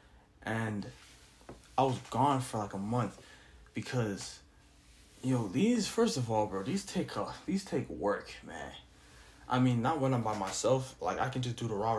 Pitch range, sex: 115-150 Hz, male